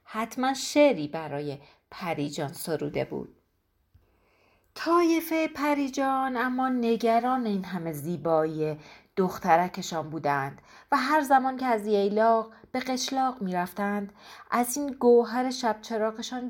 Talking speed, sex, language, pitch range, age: 105 wpm, female, Persian, 175-245 Hz, 40-59